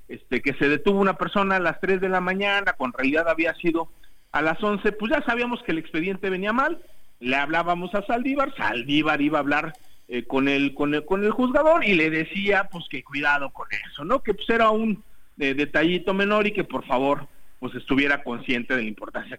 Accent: Mexican